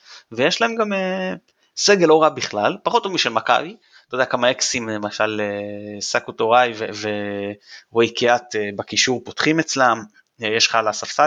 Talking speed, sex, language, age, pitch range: 125 wpm, male, Hebrew, 20-39, 110-155 Hz